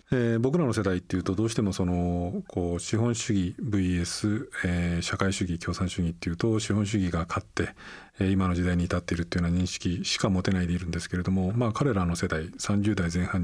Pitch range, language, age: 85-105 Hz, Japanese, 40-59